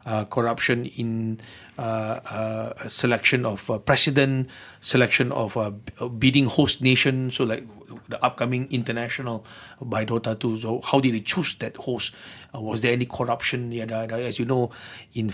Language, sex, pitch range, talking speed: English, male, 115-135 Hz, 165 wpm